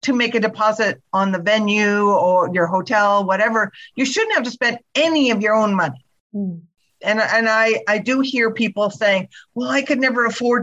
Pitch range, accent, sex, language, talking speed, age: 200-250 Hz, American, female, English, 190 wpm, 50-69